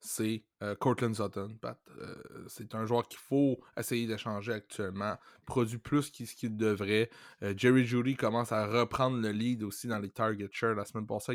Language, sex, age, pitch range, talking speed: French, male, 20-39, 105-130 Hz, 185 wpm